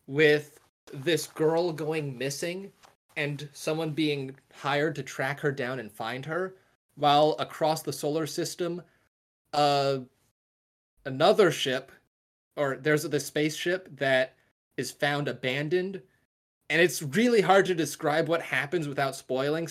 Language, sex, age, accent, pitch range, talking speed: English, male, 20-39, American, 130-160 Hz, 130 wpm